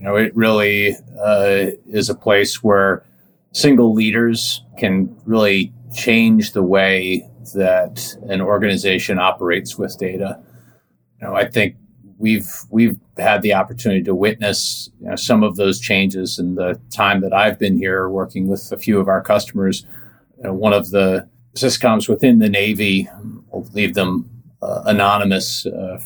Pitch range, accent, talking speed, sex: 95-115 Hz, American, 155 wpm, male